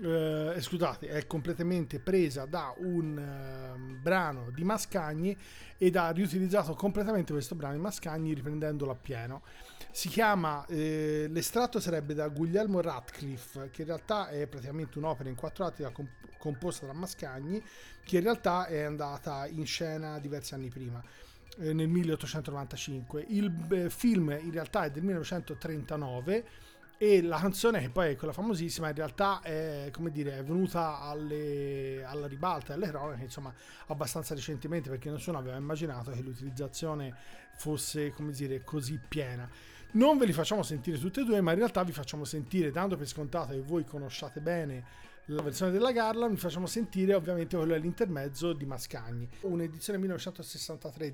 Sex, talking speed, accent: male, 155 wpm, native